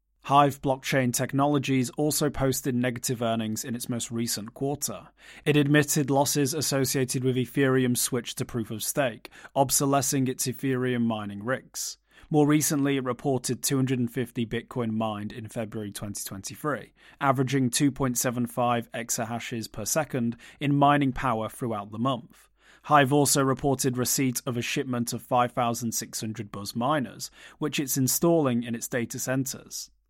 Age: 30-49